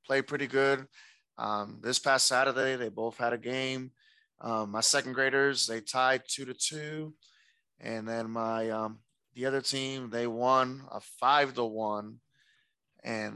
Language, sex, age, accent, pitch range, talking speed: English, male, 20-39, American, 110-135 Hz, 155 wpm